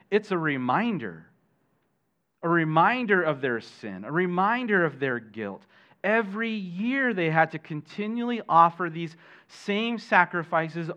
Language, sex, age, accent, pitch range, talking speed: English, male, 40-59, American, 140-210 Hz, 125 wpm